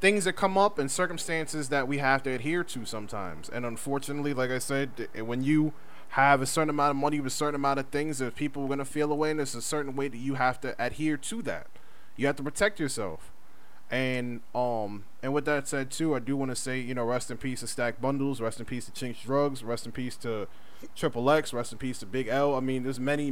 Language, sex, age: English, male, 20-39